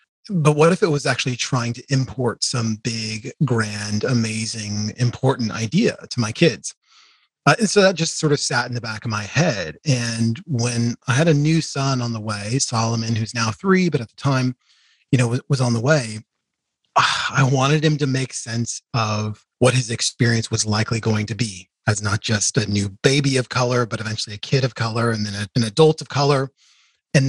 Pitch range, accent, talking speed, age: 115-140 Hz, American, 205 wpm, 30-49